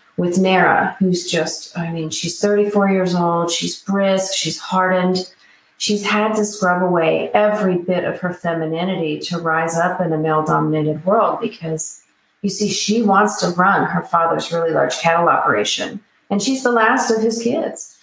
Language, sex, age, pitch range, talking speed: English, female, 40-59, 160-195 Hz, 175 wpm